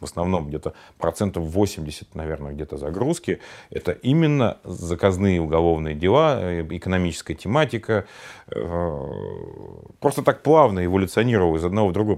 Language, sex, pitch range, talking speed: Russian, male, 85-115 Hz, 115 wpm